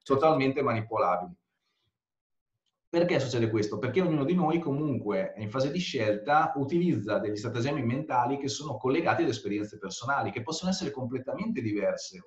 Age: 30-49